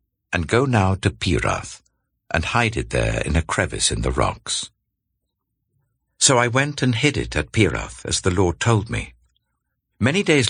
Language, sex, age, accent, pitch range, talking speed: English, male, 60-79, British, 75-110 Hz, 170 wpm